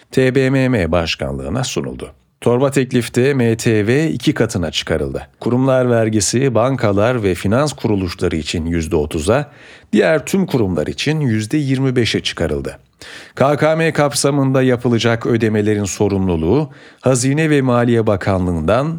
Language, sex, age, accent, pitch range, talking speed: Turkish, male, 40-59, native, 110-140 Hz, 100 wpm